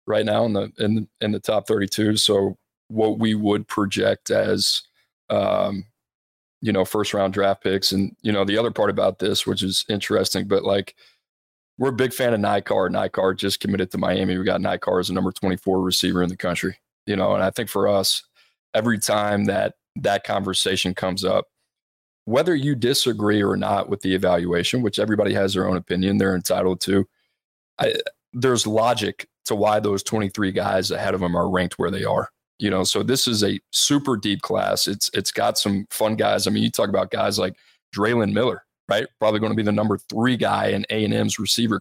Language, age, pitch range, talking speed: English, 20-39, 95-110 Hz, 200 wpm